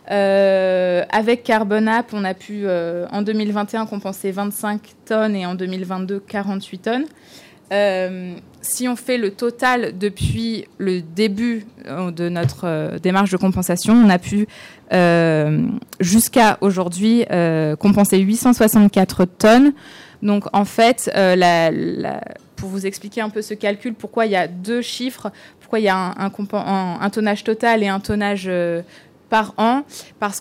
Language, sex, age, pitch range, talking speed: French, female, 20-39, 185-220 Hz, 145 wpm